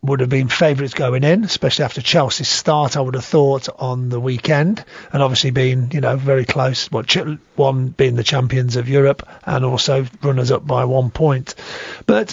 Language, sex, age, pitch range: English, male, 40-59, 135-155 Hz